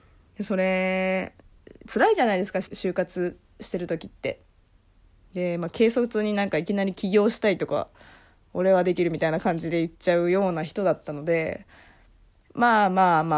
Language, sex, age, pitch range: Japanese, female, 20-39, 165-225 Hz